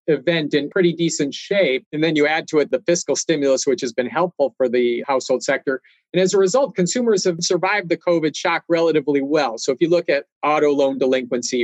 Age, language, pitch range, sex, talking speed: 40-59, English, 130-170 Hz, male, 215 wpm